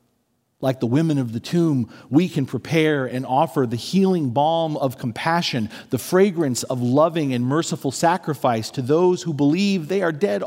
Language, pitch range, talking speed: English, 120-165 Hz, 170 wpm